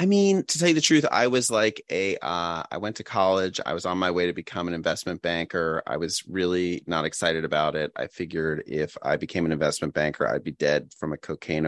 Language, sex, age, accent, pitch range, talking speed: English, male, 30-49, American, 80-110 Hz, 240 wpm